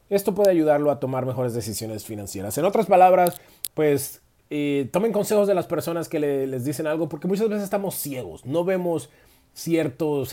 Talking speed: 175 wpm